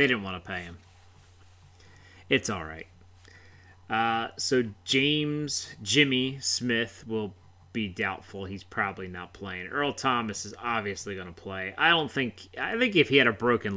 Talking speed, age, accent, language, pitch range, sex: 160 wpm, 30-49, American, English, 90-110 Hz, male